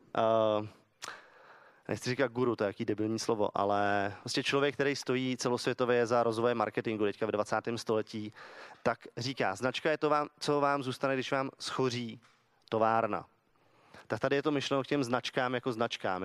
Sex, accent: male, native